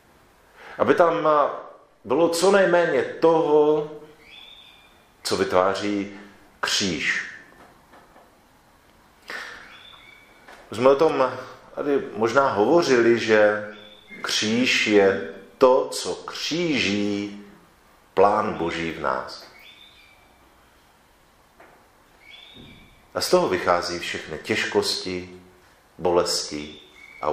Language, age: Czech, 50-69